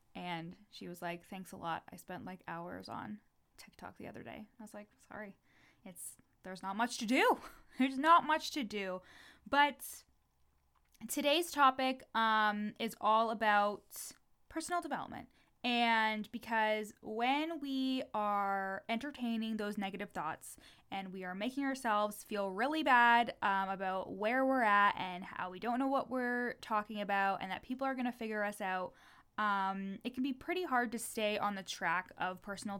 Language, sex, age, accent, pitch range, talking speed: English, female, 10-29, American, 195-245 Hz, 170 wpm